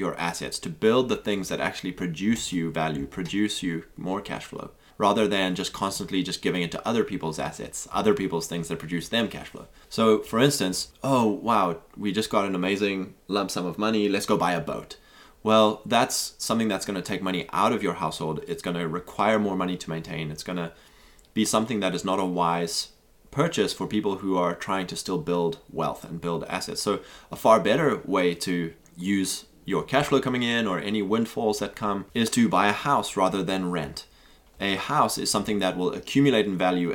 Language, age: English, 20-39